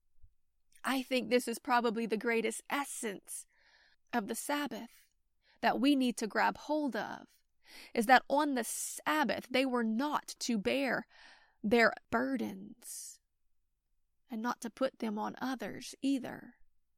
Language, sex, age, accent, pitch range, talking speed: English, female, 30-49, American, 230-270 Hz, 135 wpm